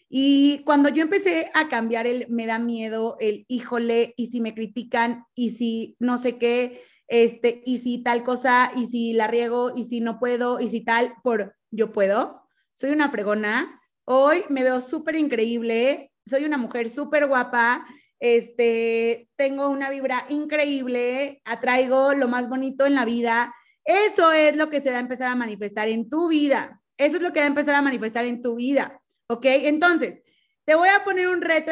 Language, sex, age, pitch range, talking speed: Spanish, female, 30-49, 235-295 Hz, 185 wpm